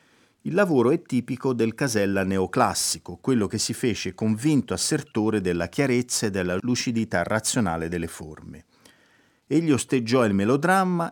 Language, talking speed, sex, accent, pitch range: Italian, 135 wpm, male, native, 100-145 Hz